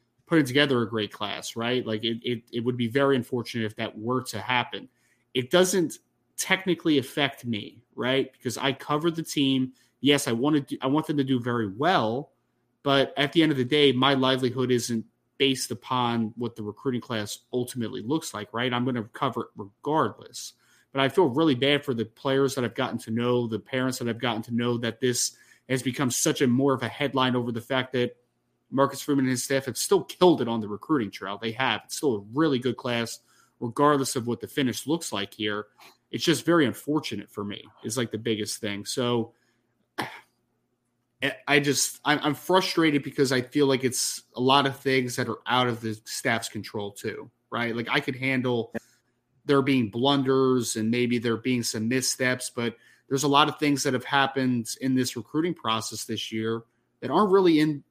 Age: 30-49